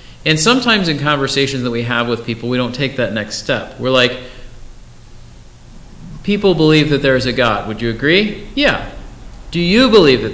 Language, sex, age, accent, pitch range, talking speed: English, male, 40-59, American, 110-140 Hz, 180 wpm